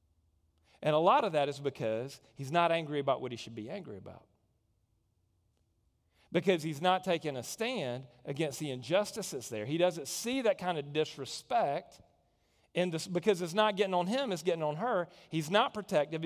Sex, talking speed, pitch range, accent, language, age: male, 180 wpm, 140-200 Hz, American, English, 40-59